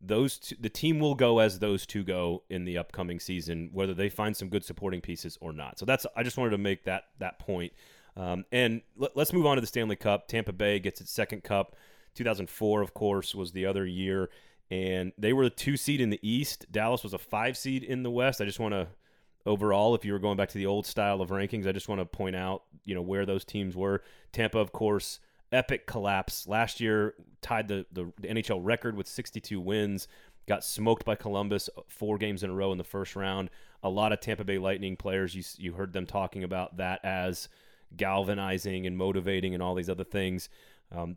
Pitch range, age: 95-110 Hz, 30-49